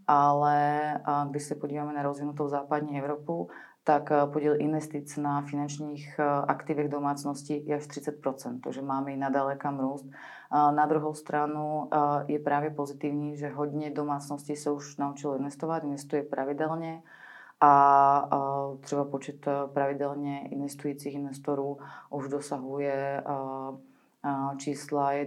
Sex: female